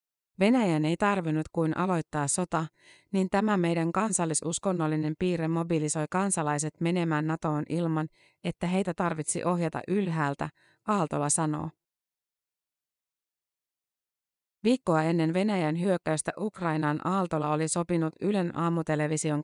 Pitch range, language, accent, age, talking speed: 155-190 Hz, Finnish, native, 30-49, 100 wpm